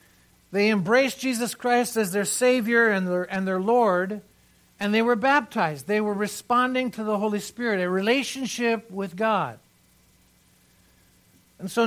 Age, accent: 60-79, American